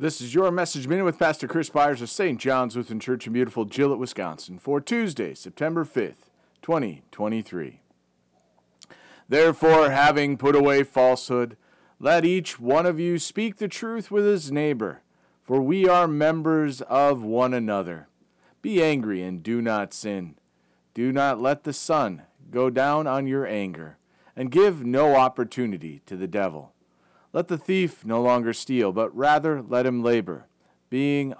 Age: 40-59